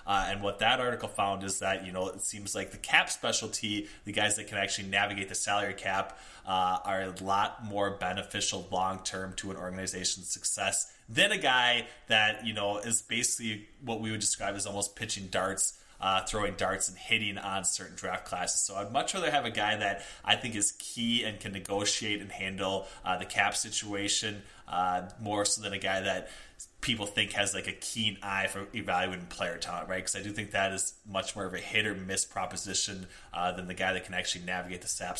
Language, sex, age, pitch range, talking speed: English, male, 20-39, 95-110 Hz, 215 wpm